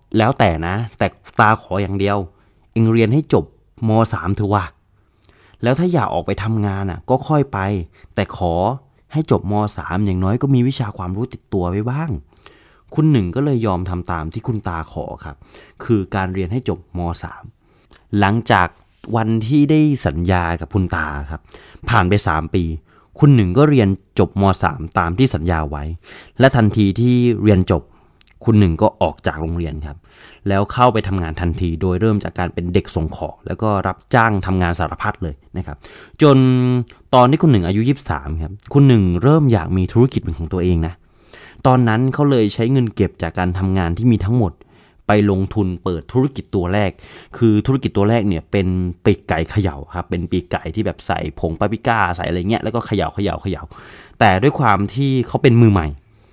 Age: 20-39